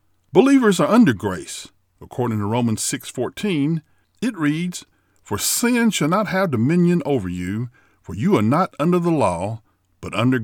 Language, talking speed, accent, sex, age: English, 155 wpm, American, male, 50-69